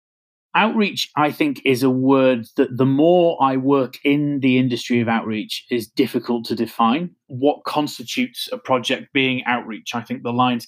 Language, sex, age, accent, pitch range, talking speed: English, male, 30-49, British, 125-170 Hz, 170 wpm